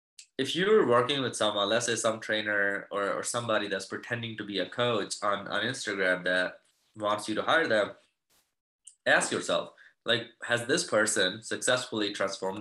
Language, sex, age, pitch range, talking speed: English, male, 20-39, 105-135 Hz, 165 wpm